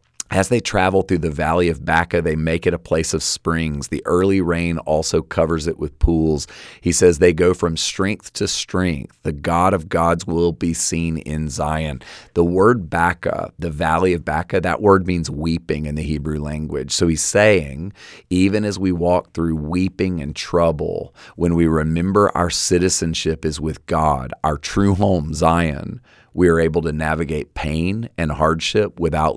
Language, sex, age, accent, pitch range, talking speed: English, male, 30-49, American, 80-90 Hz, 180 wpm